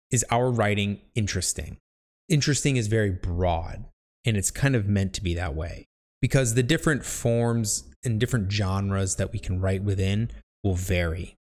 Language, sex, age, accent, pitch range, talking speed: English, male, 20-39, American, 90-115 Hz, 165 wpm